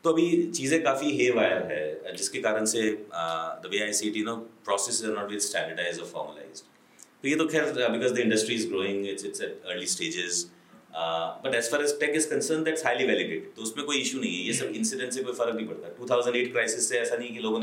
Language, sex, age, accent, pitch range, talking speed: Hindi, male, 30-49, native, 95-150 Hz, 195 wpm